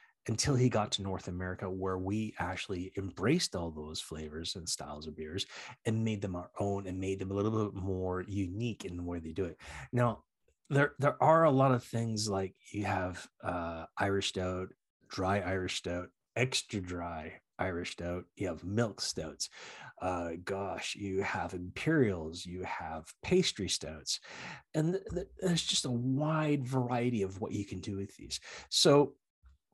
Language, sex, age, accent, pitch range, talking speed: English, male, 30-49, American, 90-125 Hz, 170 wpm